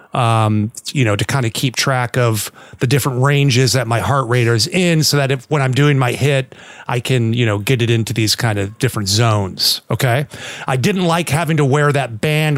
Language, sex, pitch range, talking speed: English, male, 120-155 Hz, 225 wpm